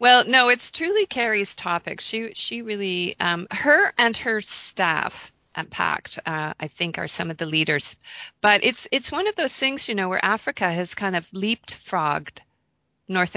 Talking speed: 180 wpm